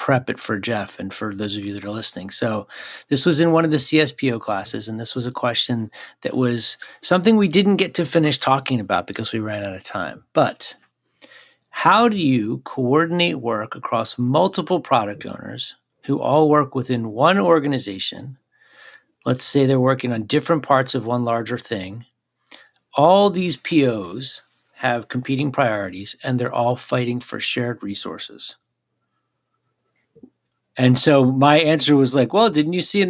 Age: 50-69